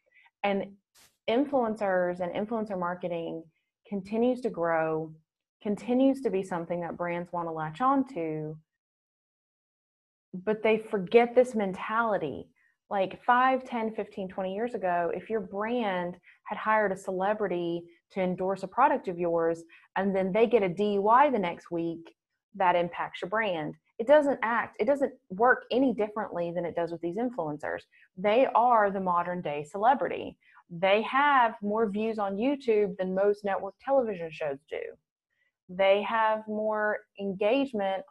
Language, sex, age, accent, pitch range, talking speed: English, female, 20-39, American, 180-230 Hz, 145 wpm